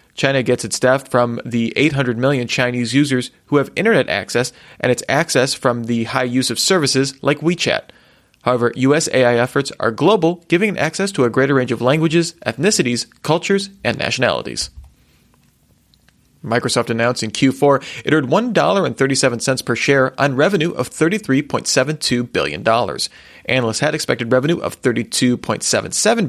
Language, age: English, 30-49